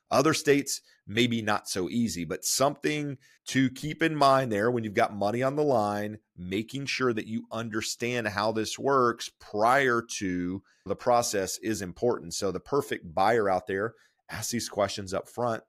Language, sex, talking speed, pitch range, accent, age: English, male, 170 wpm, 100-130 Hz, American, 30-49